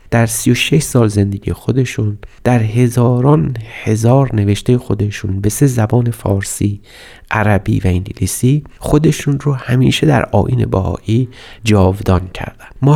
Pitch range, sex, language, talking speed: 100-130 Hz, male, Persian, 125 wpm